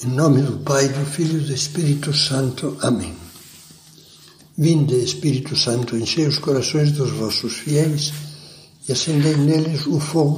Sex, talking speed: male, 145 wpm